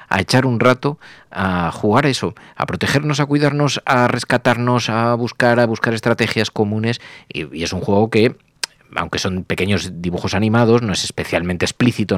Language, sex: Spanish, male